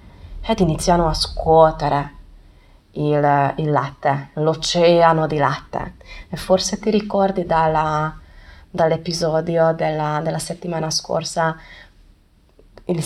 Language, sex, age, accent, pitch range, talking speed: Italian, female, 20-39, native, 155-180 Hz, 95 wpm